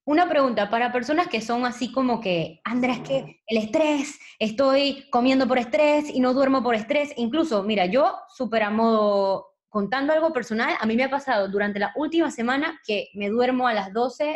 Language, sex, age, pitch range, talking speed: Spanish, female, 20-39, 215-265 Hz, 195 wpm